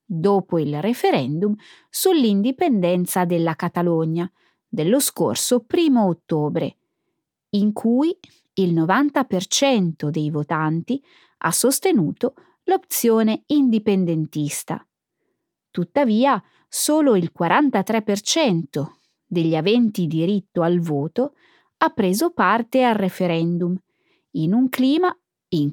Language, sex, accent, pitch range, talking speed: Italian, female, native, 170-270 Hz, 90 wpm